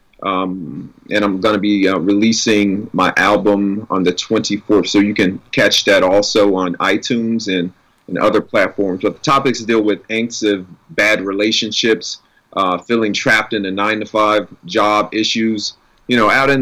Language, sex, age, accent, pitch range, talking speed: English, male, 30-49, American, 100-125 Hz, 175 wpm